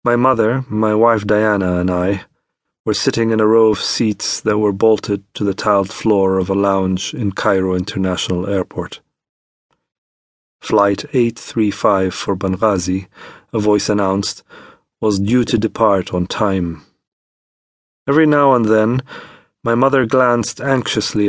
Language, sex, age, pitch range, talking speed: English, male, 40-59, 95-115 Hz, 140 wpm